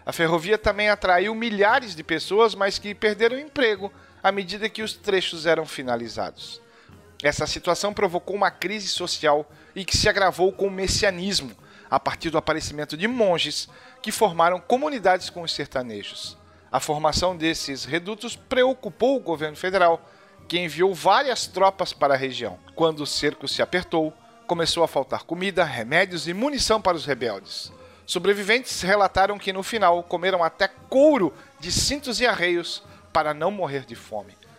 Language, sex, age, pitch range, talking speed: Portuguese, male, 40-59, 155-205 Hz, 160 wpm